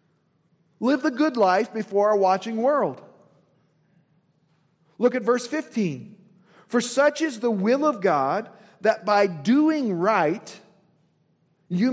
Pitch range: 180-245 Hz